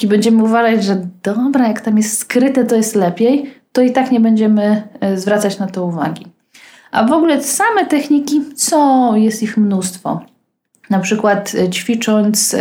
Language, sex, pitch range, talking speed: Polish, female, 190-240 Hz, 150 wpm